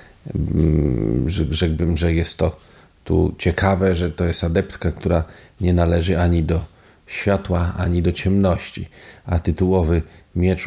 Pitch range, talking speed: 85-95 Hz, 125 wpm